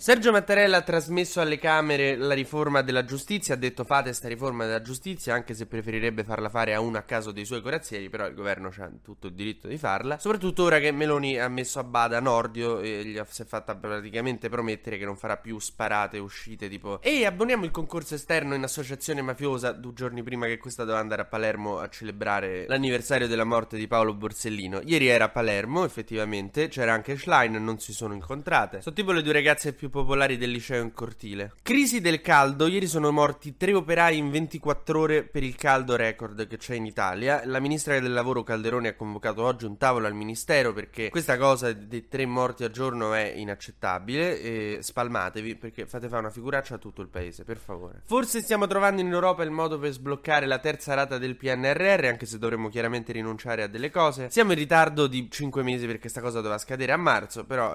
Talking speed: 210 wpm